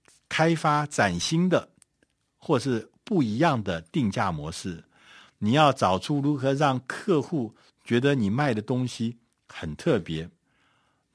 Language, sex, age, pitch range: Chinese, male, 50-69, 95-135 Hz